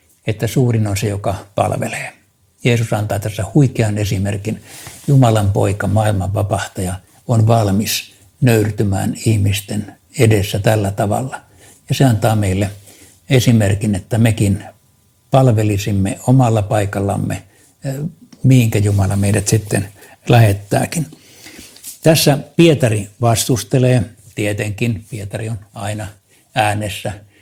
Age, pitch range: 60-79, 100-125 Hz